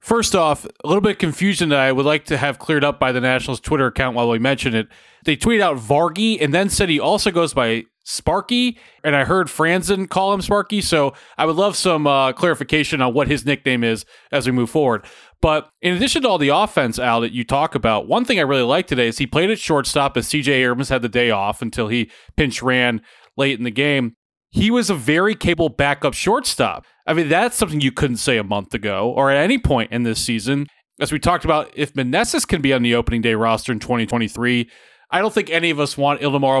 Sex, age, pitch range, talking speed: male, 30-49, 125-165 Hz, 235 wpm